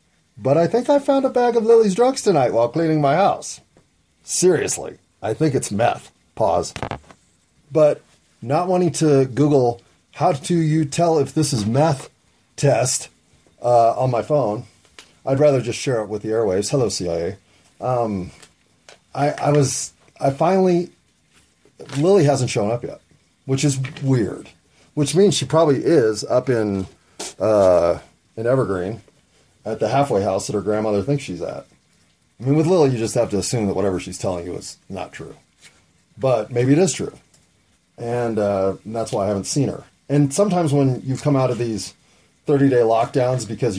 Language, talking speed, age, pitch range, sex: English, 170 wpm, 30-49, 110-145 Hz, male